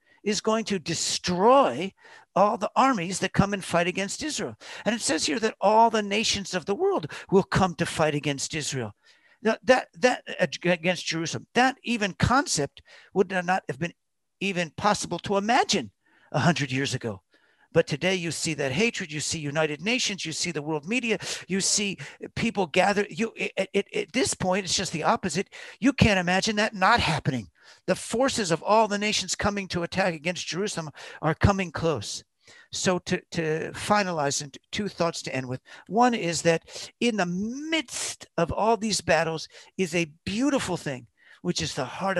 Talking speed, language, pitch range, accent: 180 wpm, English, 155-210 Hz, American